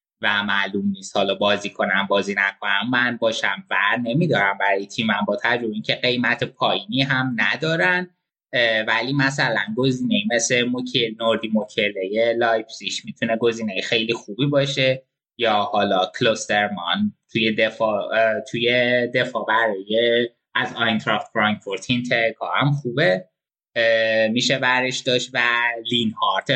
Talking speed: 120 wpm